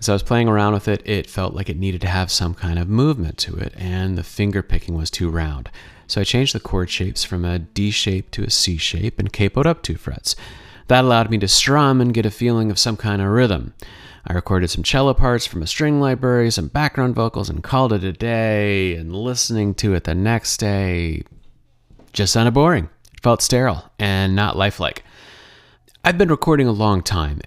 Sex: male